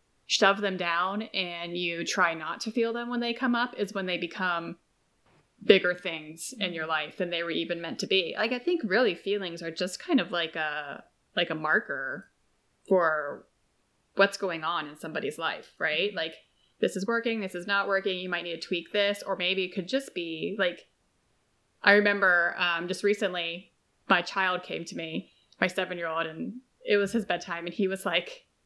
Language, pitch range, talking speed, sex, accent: English, 175-235 Hz, 195 wpm, female, American